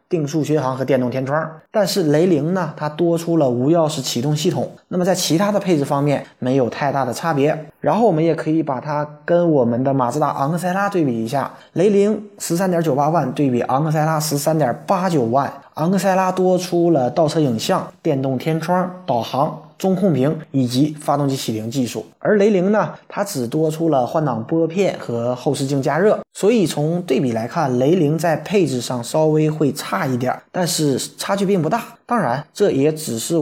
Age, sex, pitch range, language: 20-39, male, 130-170 Hz, Chinese